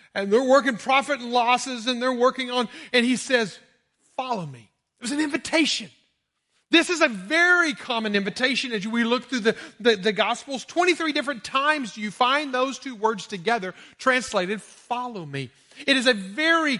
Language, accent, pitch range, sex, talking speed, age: English, American, 190-255 Hz, male, 180 wpm, 40-59